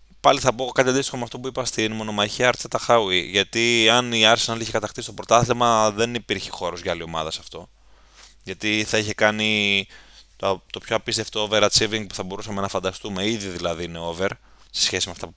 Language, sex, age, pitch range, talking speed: Greek, male, 20-39, 95-115 Hz, 205 wpm